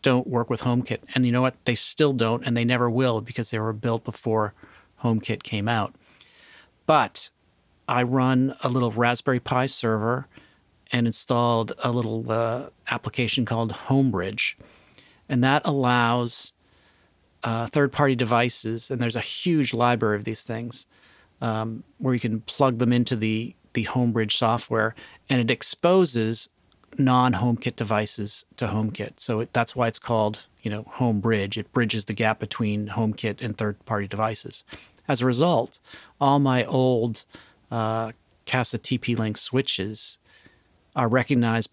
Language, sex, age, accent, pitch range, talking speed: English, male, 40-59, American, 110-125 Hz, 145 wpm